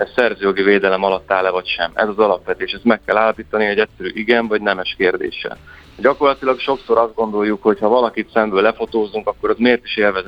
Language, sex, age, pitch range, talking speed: Hungarian, male, 30-49, 100-115 Hz, 200 wpm